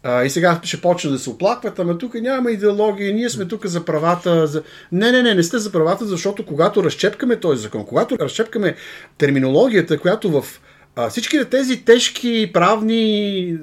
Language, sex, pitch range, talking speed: Bulgarian, male, 150-215 Hz, 165 wpm